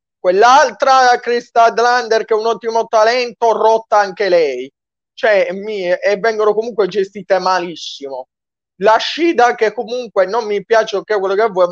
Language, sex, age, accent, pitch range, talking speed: Italian, male, 30-49, native, 175-230 Hz, 155 wpm